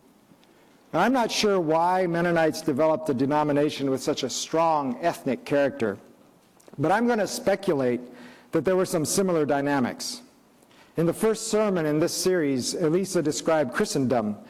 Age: 50-69